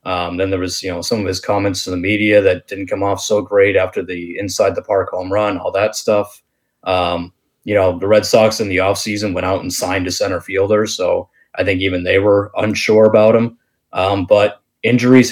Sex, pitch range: male, 95-120 Hz